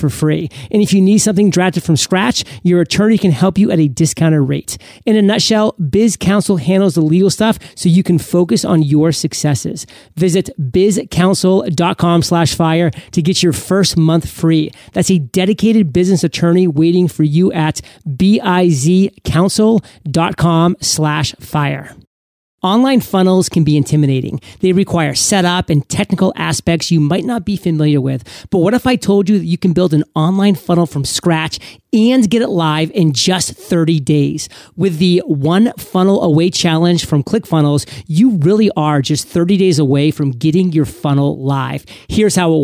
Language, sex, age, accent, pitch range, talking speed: English, male, 30-49, American, 155-195 Hz, 165 wpm